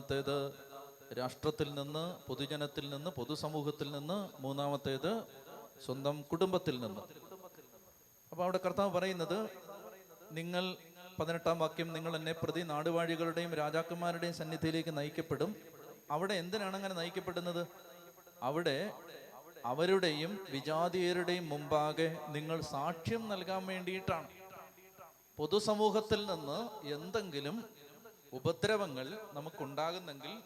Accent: native